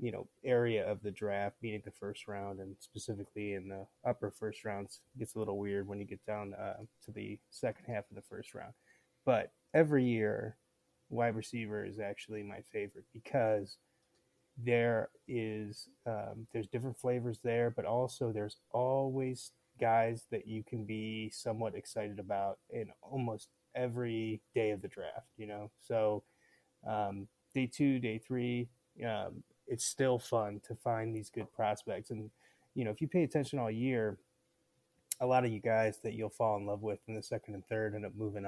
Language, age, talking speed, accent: English, 20-39, 180 wpm, American